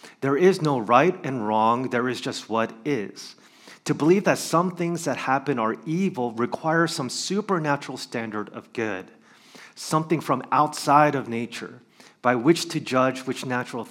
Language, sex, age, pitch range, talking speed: English, male, 30-49, 110-145 Hz, 160 wpm